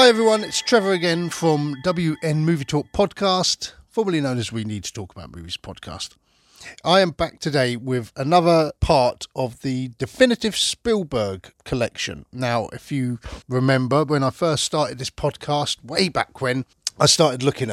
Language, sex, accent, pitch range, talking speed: English, male, British, 110-155 Hz, 165 wpm